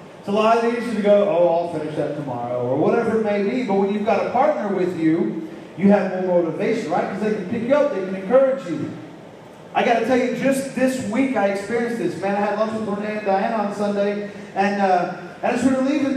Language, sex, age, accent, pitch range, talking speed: English, male, 40-59, American, 190-235 Hz, 250 wpm